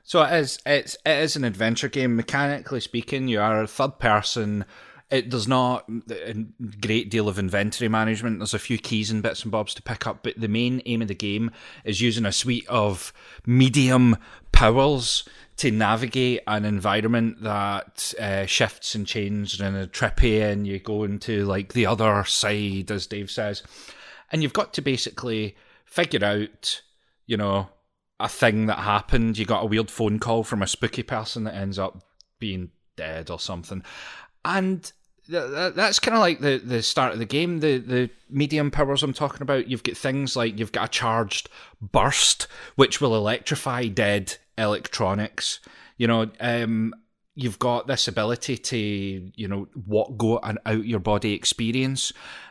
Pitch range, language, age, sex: 105-130 Hz, English, 30-49, male